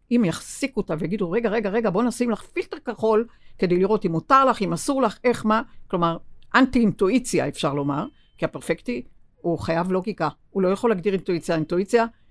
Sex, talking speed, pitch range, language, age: female, 185 wpm, 160-230 Hz, Hebrew, 60-79